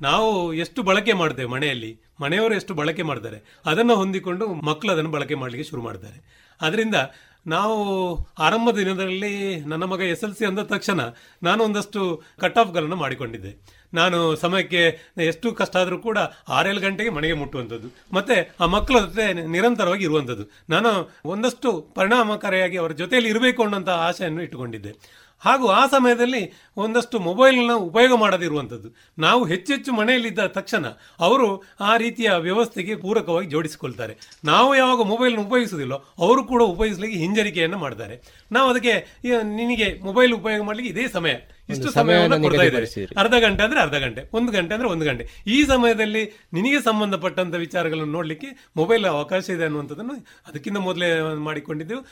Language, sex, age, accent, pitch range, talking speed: Kannada, male, 30-49, native, 155-225 Hz, 135 wpm